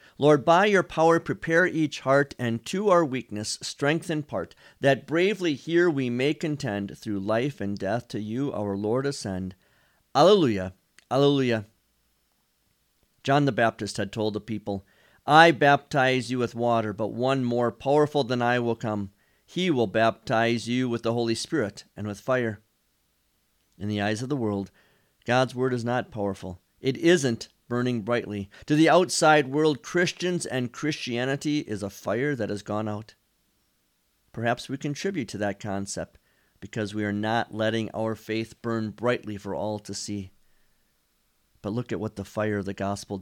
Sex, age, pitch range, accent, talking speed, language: male, 50-69, 105-145 Hz, American, 165 wpm, English